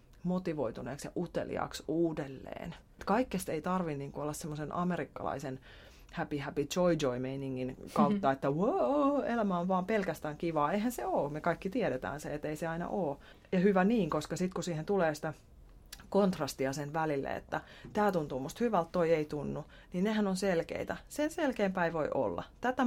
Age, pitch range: 30-49, 145-190 Hz